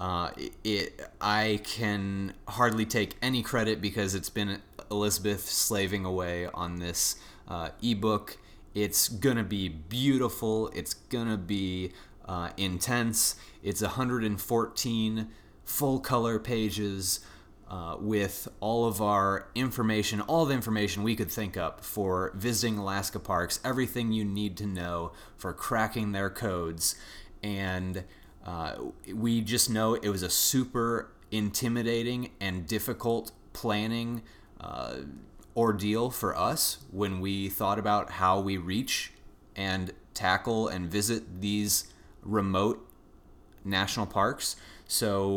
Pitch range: 95-110 Hz